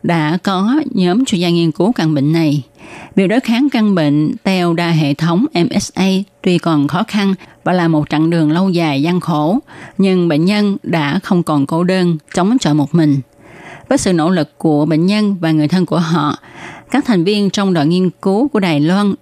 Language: Vietnamese